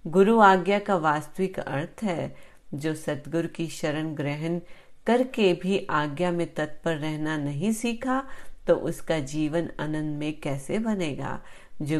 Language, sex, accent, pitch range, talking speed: Hindi, female, native, 155-195 Hz, 130 wpm